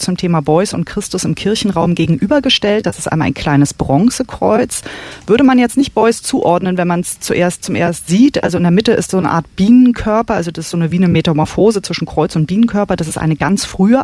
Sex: female